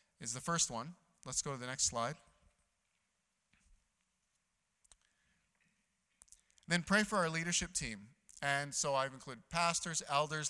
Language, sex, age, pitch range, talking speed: English, male, 30-49, 130-175 Hz, 125 wpm